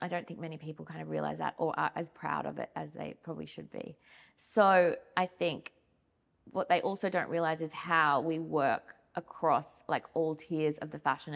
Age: 20-39